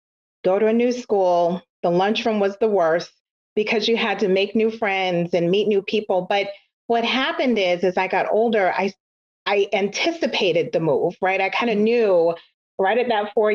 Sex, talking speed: female, 190 wpm